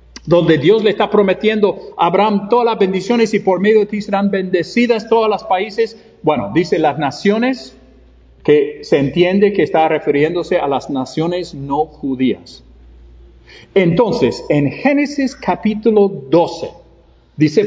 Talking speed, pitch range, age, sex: 140 wpm, 155-220 Hz, 50-69, male